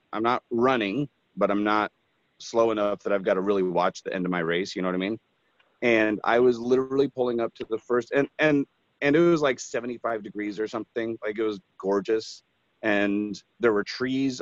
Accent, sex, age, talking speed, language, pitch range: American, male, 30-49, 210 wpm, English, 100-120 Hz